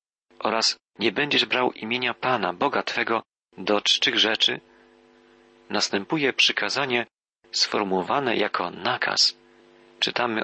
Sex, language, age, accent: male, Polish, 40-59, native